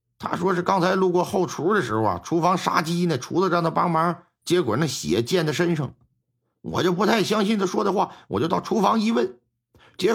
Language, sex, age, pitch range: Chinese, male, 50-69, 115-175 Hz